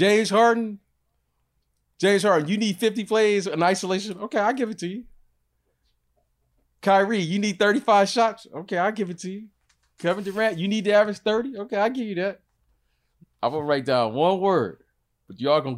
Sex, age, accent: male, 30-49, American